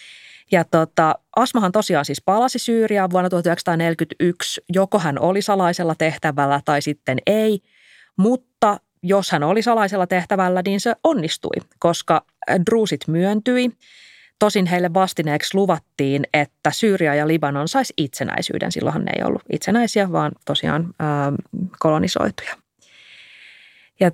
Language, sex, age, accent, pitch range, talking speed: Finnish, female, 30-49, native, 160-220 Hz, 120 wpm